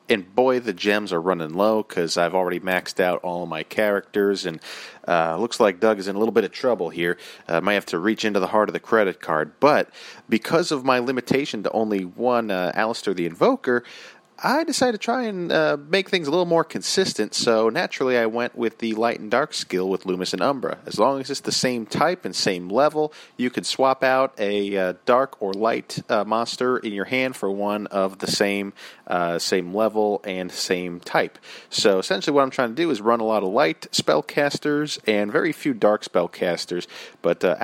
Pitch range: 95-125 Hz